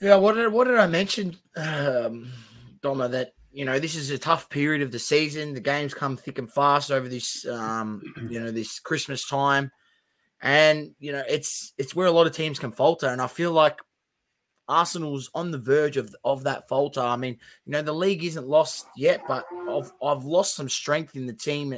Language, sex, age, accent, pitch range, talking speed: English, male, 20-39, Australian, 135-165 Hz, 210 wpm